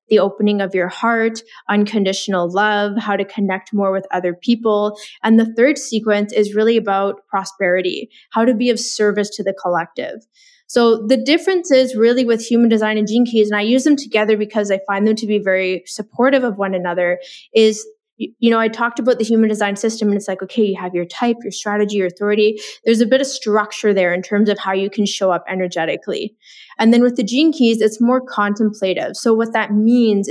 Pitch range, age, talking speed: 200-235 Hz, 20-39, 210 wpm